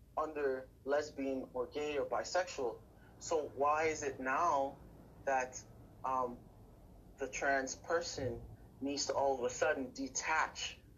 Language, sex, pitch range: English, male, 135-185 Hz